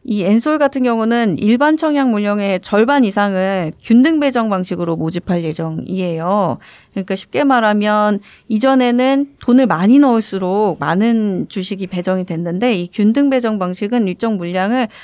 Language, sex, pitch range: Korean, female, 190-250 Hz